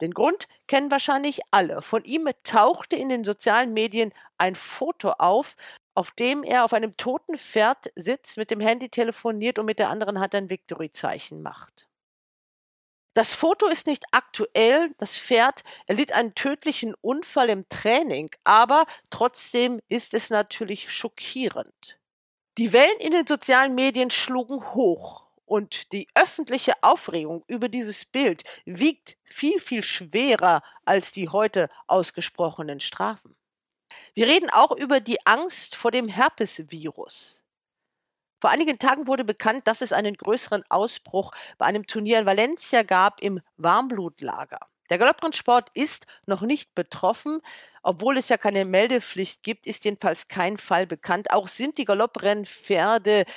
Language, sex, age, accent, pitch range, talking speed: German, female, 50-69, German, 200-265 Hz, 140 wpm